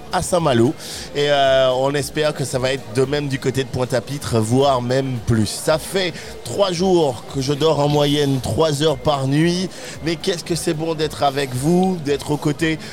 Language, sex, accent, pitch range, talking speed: French, male, French, 130-160 Hz, 200 wpm